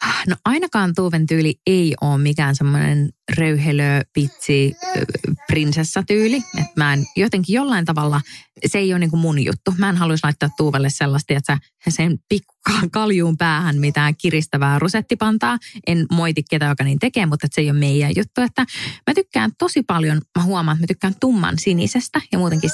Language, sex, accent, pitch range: Finnish, female, native, 140-170 Hz